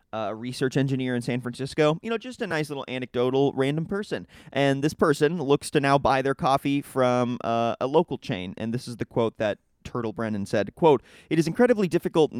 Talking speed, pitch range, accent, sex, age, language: 215 wpm, 125-155 Hz, American, male, 30-49, English